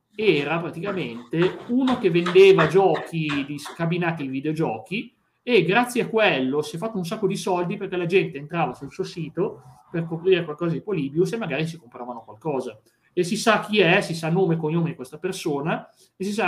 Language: Italian